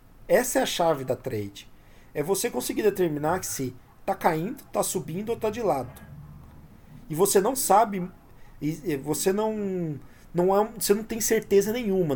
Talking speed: 145 wpm